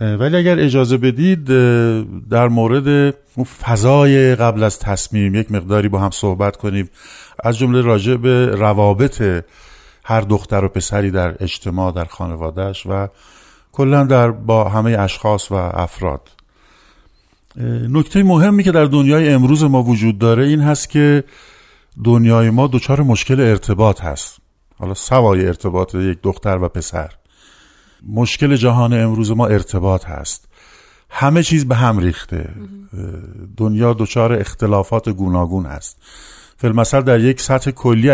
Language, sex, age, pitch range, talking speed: Persian, male, 50-69, 100-130 Hz, 130 wpm